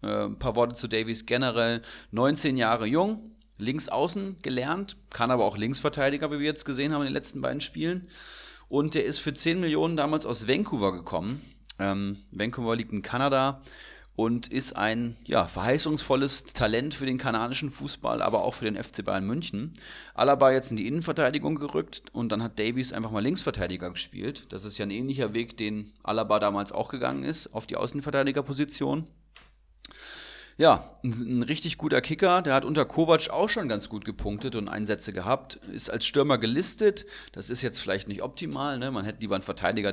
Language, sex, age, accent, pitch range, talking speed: German, male, 30-49, German, 110-145 Hz, 180 wpm